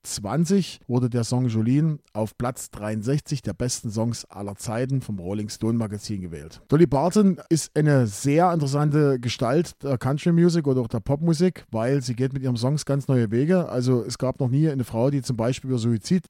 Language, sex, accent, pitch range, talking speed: German, male, German, 120-155 Hz, 190 wpm